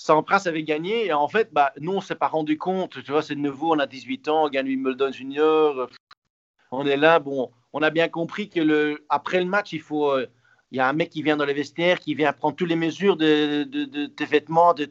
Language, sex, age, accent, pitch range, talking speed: French, male, 40-59, French, 140-180 Hz, 260 wpm